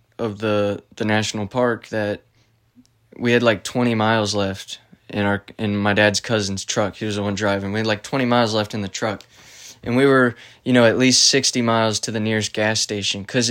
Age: 20-39